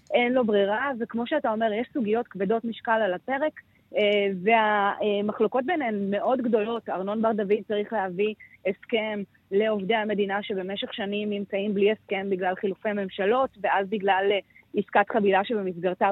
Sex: female